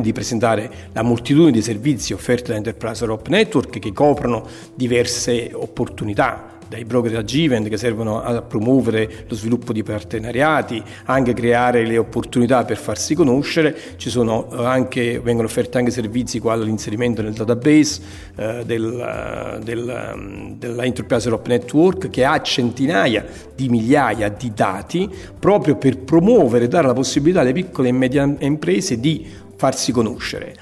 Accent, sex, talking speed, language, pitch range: native, male, 145 wpm, Italian, 115-140 Hz